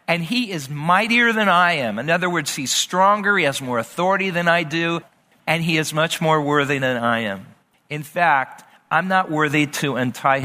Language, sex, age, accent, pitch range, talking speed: English, male, 50-69, American, 135-175 Hz, 200 wpm